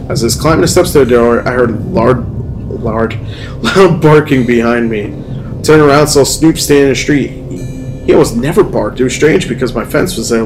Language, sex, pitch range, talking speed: English, male, 120-140 Hz, 235 wpm